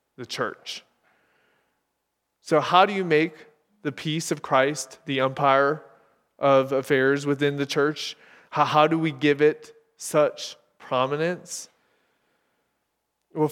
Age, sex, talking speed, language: 20-39, male, 120 wpm, English